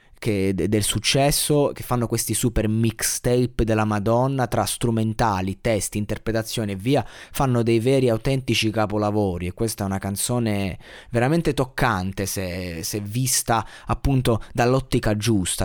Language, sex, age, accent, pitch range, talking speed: Italian, male, 20-39, native, 105-125 Hz, 130 wpm